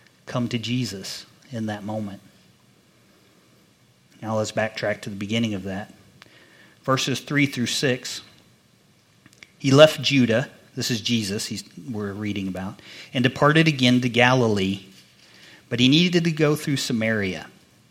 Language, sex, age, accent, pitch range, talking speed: English, male, 40-59, American, 105-130 Hz, 130 wpm